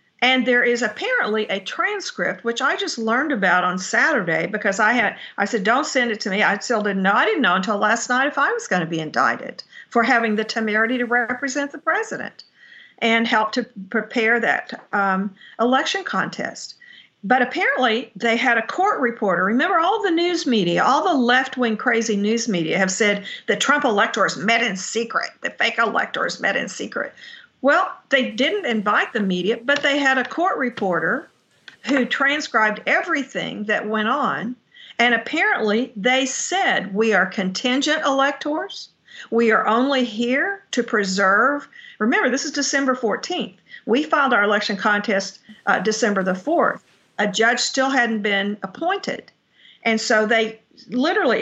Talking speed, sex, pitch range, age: 165 wpm, female, 215-275 Hz, 50-69